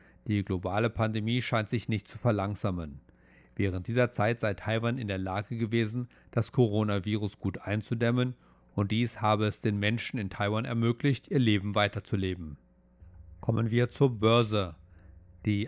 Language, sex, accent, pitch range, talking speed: German, male, German, 100-120 Hz, 145 wpm